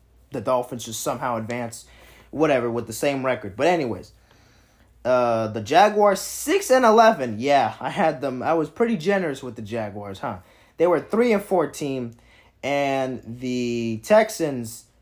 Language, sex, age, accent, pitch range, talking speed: English, male, 20-39, American, 115-170 Hz, 150 wpm